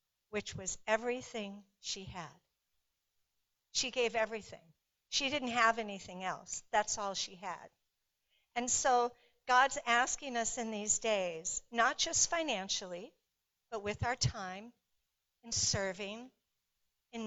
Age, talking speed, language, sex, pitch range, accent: 60-79, 120 wpm, English, female, 195-245 Hz, American